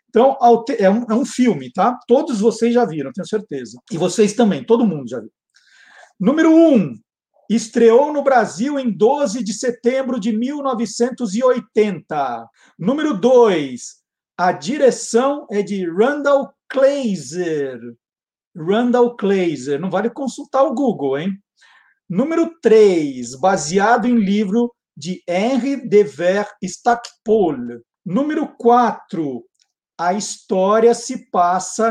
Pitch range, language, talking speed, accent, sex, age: 195-250 Hz, Portuguese, 120 wpm, Brazilian, male, 50-69